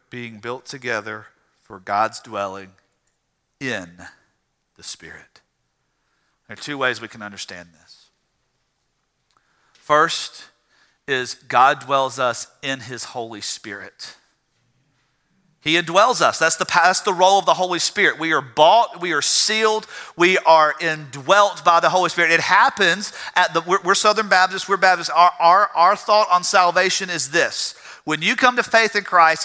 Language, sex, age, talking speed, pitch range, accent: English, male, 40-59, 155 wpm, 165-220 Hz, American